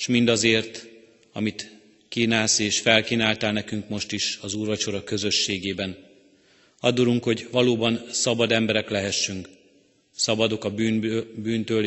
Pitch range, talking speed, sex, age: 105-115 Hz, 110 wpm, male, 30-49